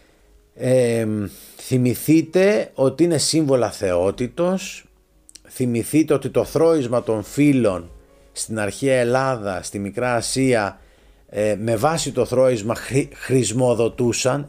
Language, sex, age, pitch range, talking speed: Greek, male, 30-49, 110-150 Hz, 95 wpm